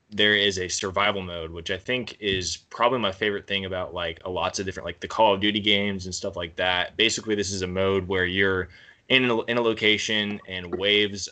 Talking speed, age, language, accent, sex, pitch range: 230 wpm, 20-39, English, American, male, 90-105 Hz